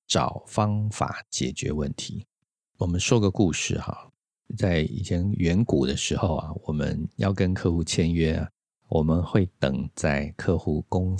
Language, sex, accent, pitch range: Chinese, male, native, 80-110 Hz